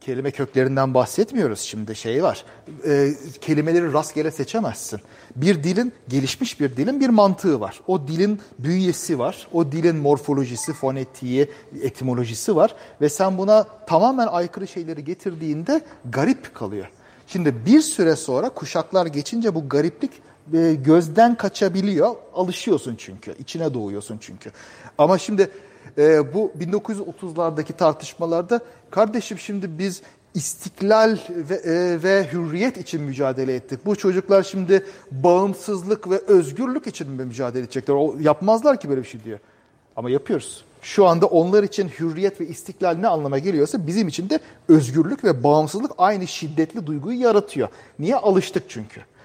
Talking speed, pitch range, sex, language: 135 wpm, 140-195 Hz, male, Turkish